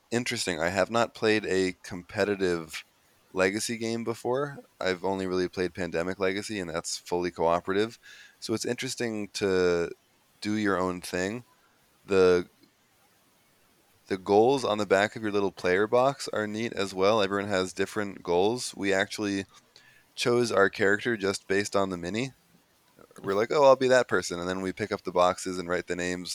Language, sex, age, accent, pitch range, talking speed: English, male, 20-39, American, 90-105 Hz, 170 wpm